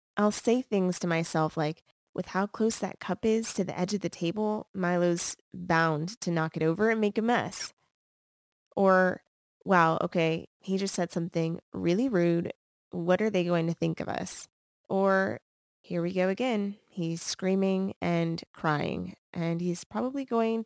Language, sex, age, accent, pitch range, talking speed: English, female, 20-39, American, 165-195 Hz, 170 wpm